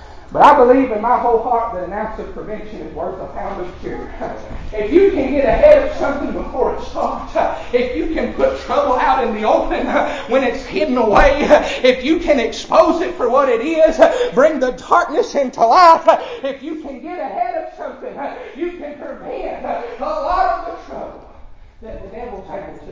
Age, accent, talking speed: 40-59, American, 195 wpm